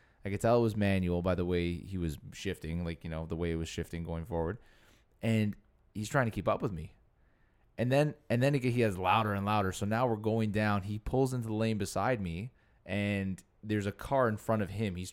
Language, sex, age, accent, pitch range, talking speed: English, male, 20-39, American, 90-115 Hz, 240 wpm